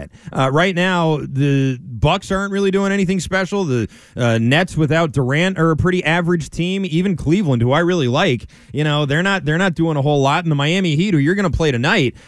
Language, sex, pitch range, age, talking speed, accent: English, male, 130-190 Hz, 20-39, 225 wpm, American